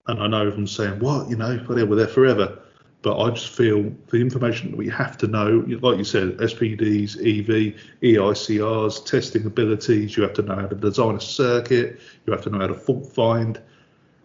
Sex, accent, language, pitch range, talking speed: male, British, English, 105-120 Hz, 210 wpm